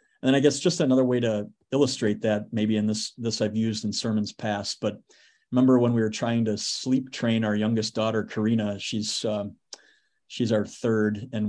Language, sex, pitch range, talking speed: English, male, 110-135 Hz, 195 wpm